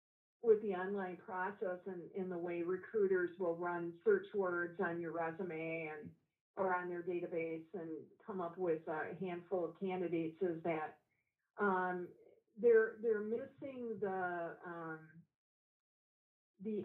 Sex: female